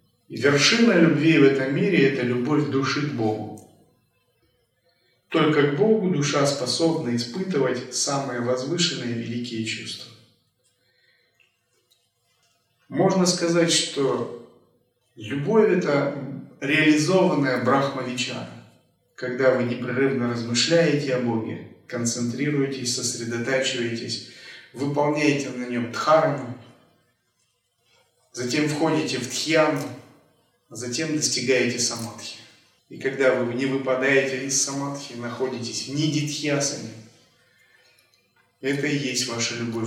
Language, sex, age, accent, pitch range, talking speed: Russian, male, 30-49, native, 120-150 Hz, 90 wpm